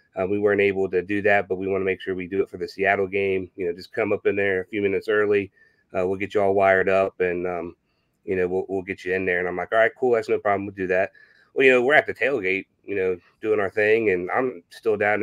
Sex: male